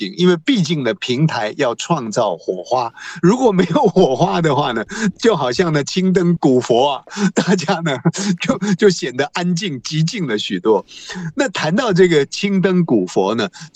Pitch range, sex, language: 140-205 Hz, male, Chinese